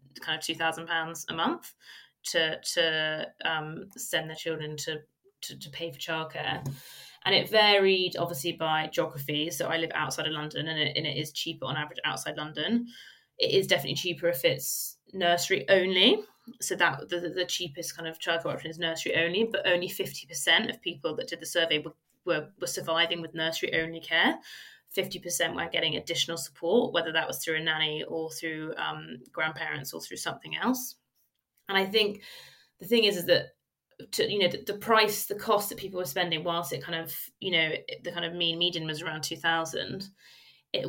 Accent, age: British, 20-39